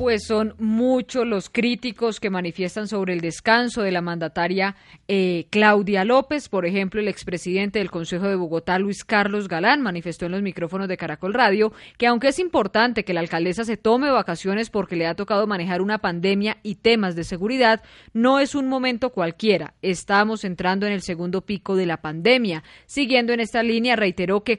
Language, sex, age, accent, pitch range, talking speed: Spanish, female, 20-39, Colombian, 185-235 Hz, 185 wpm